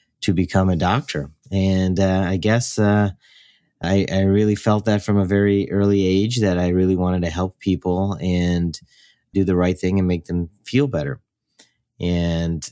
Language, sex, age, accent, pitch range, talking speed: English, male, 30-49, American, 85-100 Hz, 175 wpm